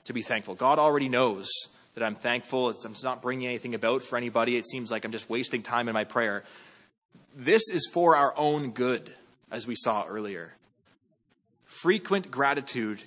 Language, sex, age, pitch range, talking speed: English, male, 20-39, 125-160 Hz, 170 wpm